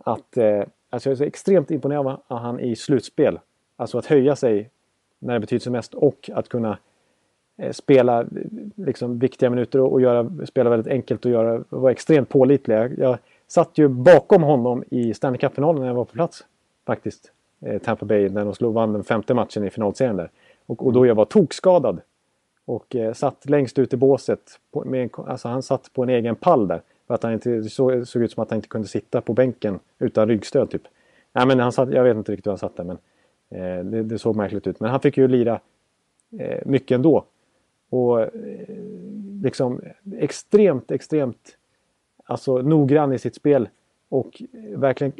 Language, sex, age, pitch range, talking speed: Swedish, male, 30-49, 115-145 Hz, 195 wpm